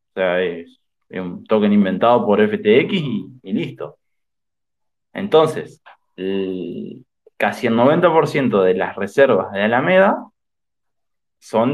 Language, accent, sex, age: Spanish, Argentinian, male, 20-39